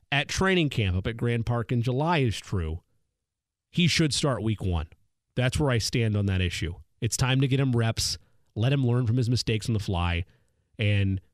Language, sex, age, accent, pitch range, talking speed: English, male, 30-49, American, 105-145 Hz, 205 wpm